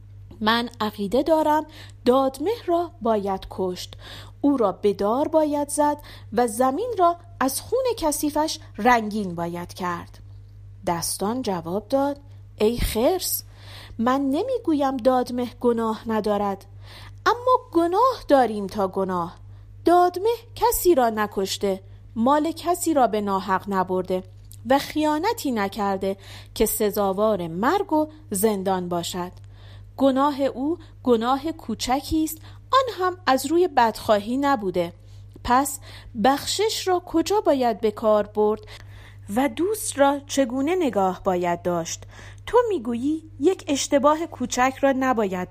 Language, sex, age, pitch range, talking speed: Persian, female, 40-59, 185-295 Hz, 115 wpm